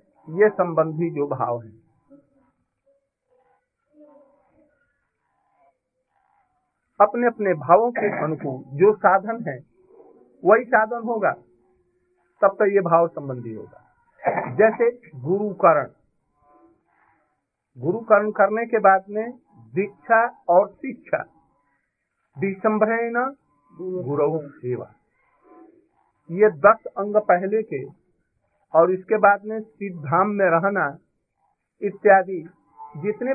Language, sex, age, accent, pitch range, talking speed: Hindi, male, 50-69, native, 170-240 Hz, 90 wpm